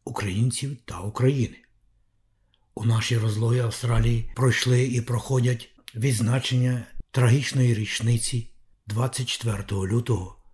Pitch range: 115-125 Hz